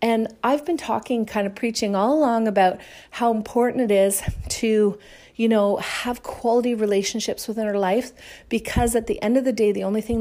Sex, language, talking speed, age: female, English, 195 wpm, 40-59